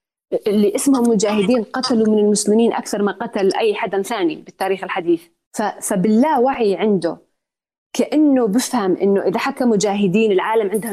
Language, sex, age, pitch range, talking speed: Arabic, female, 30-49, 200-255 Hz, 145 wpm